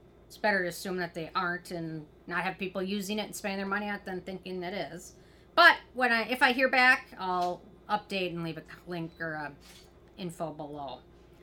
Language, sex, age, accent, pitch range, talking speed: English, female, 30-49, American, 175-240 Hz, 210 wpm